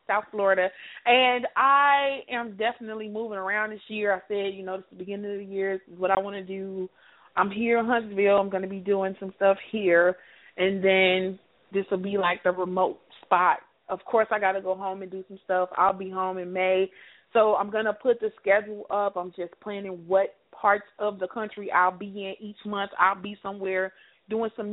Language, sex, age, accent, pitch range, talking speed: English, female, 20-39, American, 190-225 Hz, 205 wpm